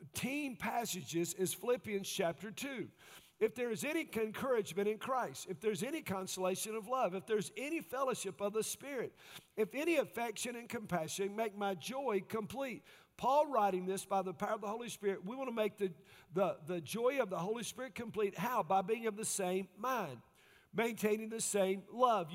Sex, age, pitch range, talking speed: male, 50-69, 200-265 Hz, 185 wpm